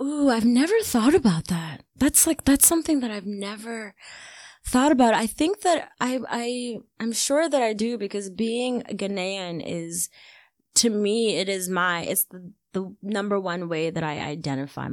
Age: 20-39